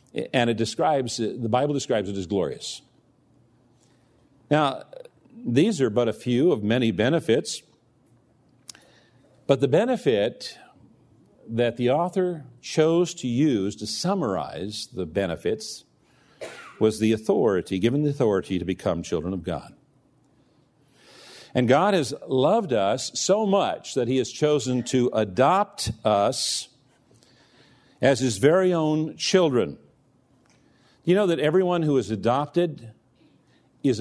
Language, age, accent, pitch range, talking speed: English, 50-69, American, 115-150 Hz, 120 wpm